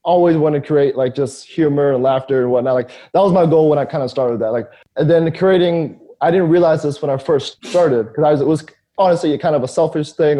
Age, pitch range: 20-39, 130-155 Hz